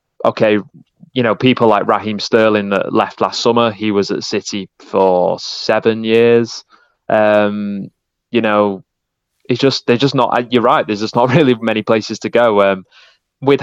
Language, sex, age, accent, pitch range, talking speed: English, male, 20-39, British, 95-115 Hz, 165 wpm